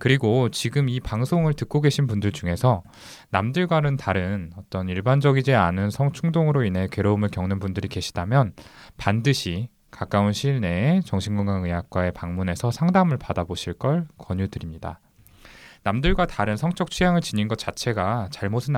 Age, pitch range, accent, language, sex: 20-39, 95-140 Hz, native, Korean, male